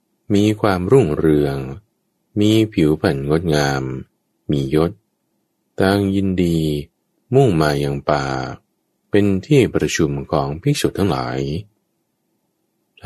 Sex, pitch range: male, 70-100 Hz